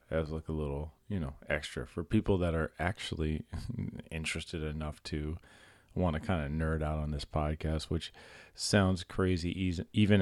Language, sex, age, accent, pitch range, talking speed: English, male, 30-49, American, 80-95 Hz, 170 wpm